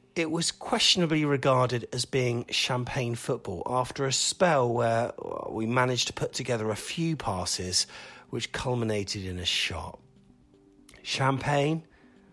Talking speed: 125 wpm